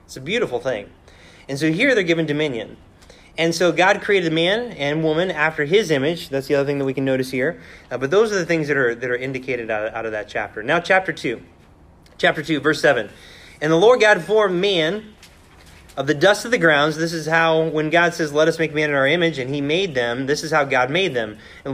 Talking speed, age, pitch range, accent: 245 wpm, 30-49, 130-165 Hz, American